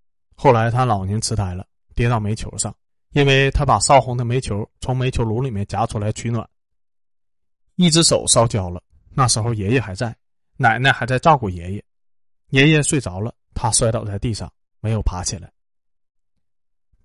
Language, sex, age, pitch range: Chinese, male, 20-39, 100-130 Hz